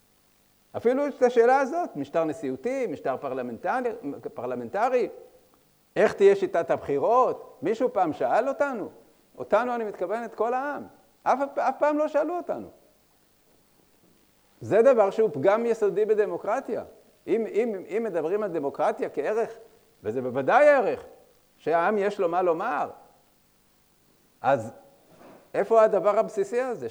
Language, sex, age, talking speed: Hebrew, male, 50-69, 125 wpm